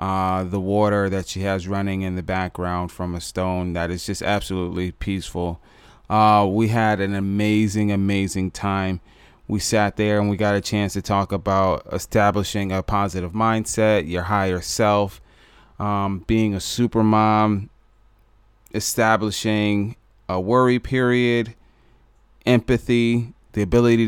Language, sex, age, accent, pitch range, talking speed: English, male, 20-39, American, 95-110 Hz, 135 wpm